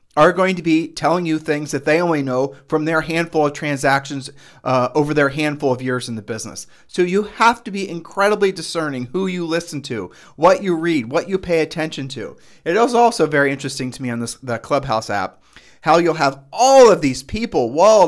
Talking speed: 210 wpm